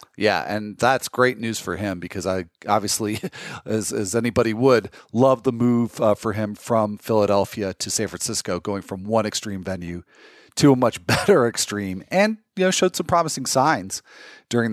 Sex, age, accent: male, 40-59, American